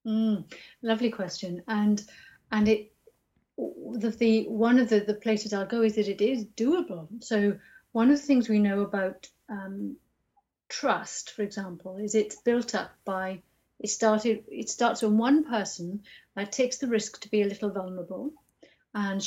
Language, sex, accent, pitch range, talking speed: English, female, British, 200-235 Hz, 170 wpm